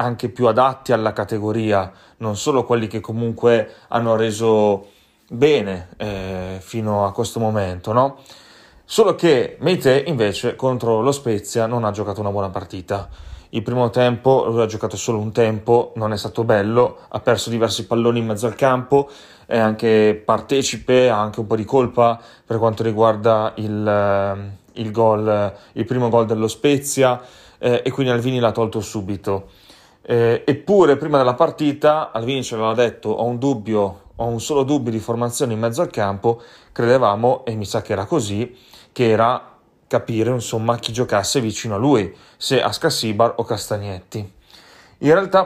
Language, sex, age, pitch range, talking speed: Italian, male, 30-49, 110-125 Hz, 165 wpm